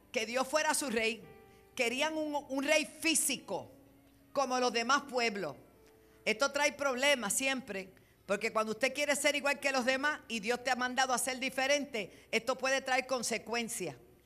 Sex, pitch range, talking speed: female, 195-275 Hz, 165 wpm